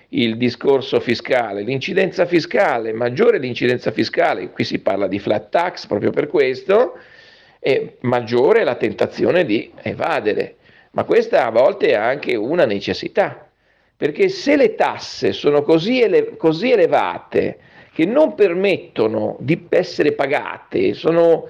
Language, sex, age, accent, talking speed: Italian, male, 50-69, native, 125 wpm